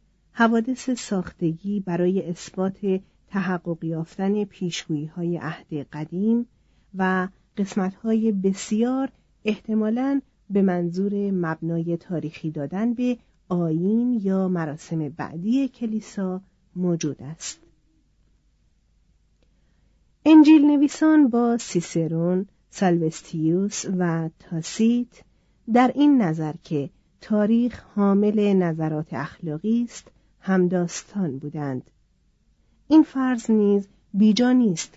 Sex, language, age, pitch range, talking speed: female, Persian, 40-59, 165-220 Hz, 85 wpm